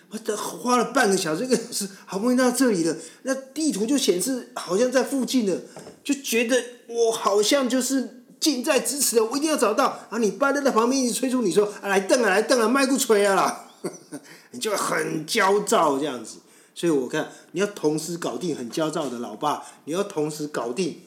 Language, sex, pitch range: Chinese, male, 155-255 Hz